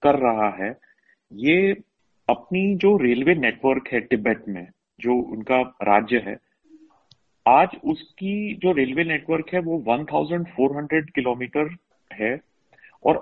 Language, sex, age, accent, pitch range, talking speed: Hindi, male, 40-59, native, 130-195 Hz, 120 wpm